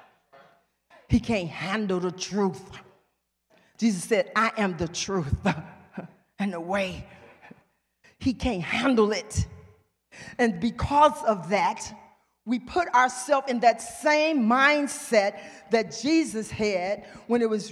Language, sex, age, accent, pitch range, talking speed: English, female, 40-59, American, 185-290 Hz, 120 wpm